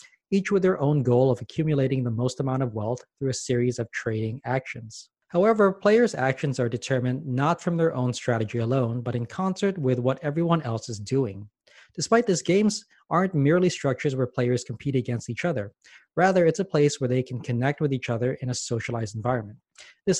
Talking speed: 195 wpm